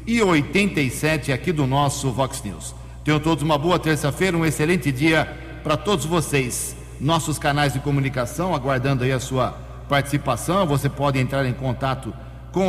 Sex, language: male, Portuguese